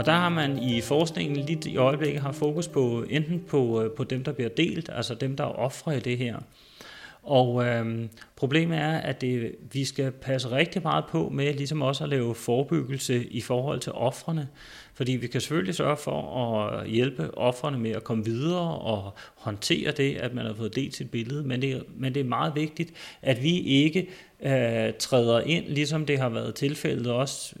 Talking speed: 200 wpm